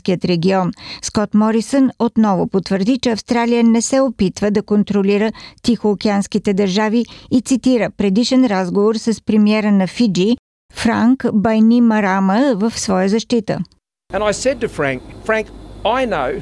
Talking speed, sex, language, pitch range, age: 105 wpm, male, Bulgarian, 190-230 Hz, 50-69